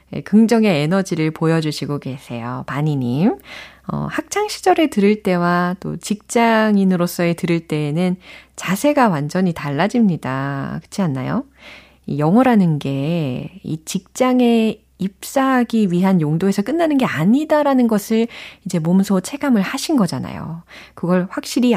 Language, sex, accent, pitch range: Korean, female, native, 155-230 Hz